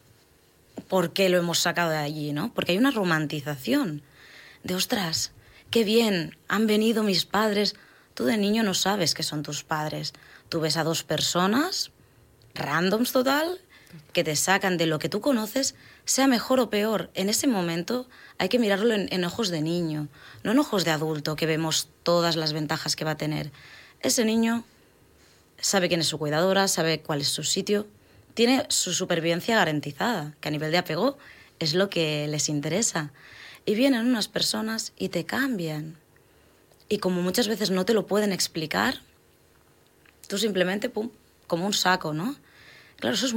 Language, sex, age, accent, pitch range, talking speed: Spanish, female, 20-39, Spanish, 150-215 Hz, 175 wpm